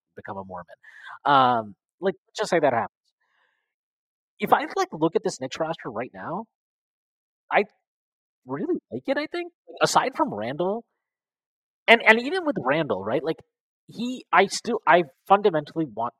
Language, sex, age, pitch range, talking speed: English, male, 30-49, 145-220 Hz, 155 wpm